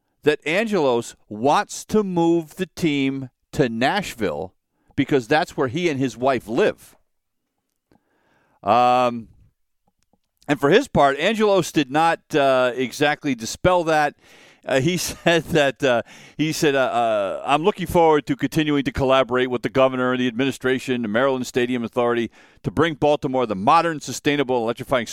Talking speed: 150 wpm